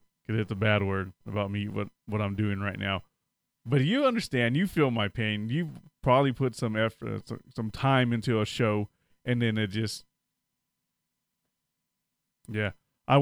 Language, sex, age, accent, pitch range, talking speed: English, male, 30-49, American, 105-125 Hz, 165 wpm